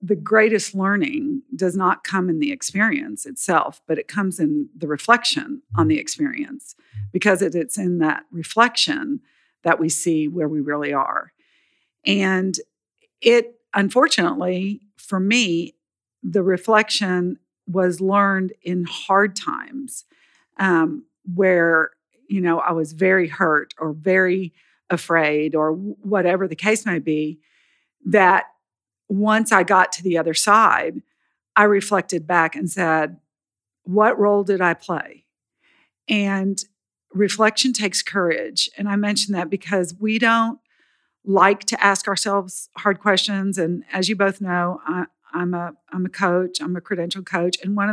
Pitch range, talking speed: 175-220 Hz, 140 wpm